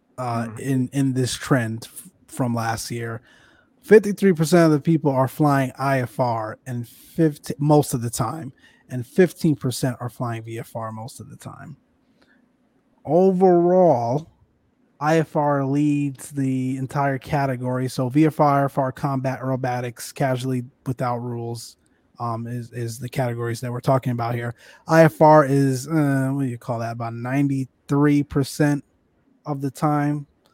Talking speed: 135 wpm